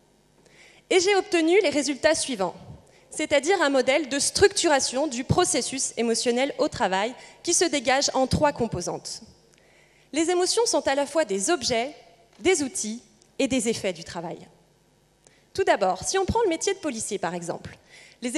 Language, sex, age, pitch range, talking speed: French, female, 20-39, 230-335 Hz, 160 wpm